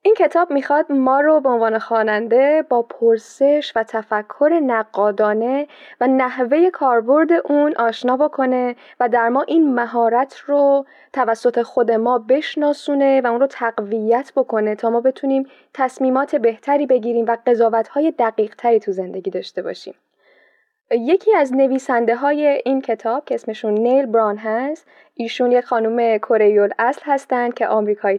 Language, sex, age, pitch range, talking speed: Persian, female, 10-29, 225-275 Hz, 140 wpm